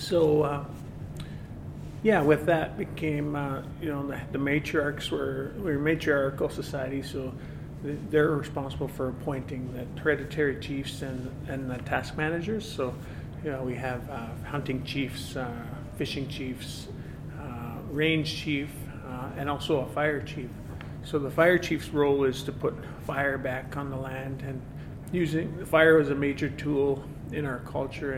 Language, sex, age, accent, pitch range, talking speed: English, male, 40-59, American, 130-150 Hz, 155 wpm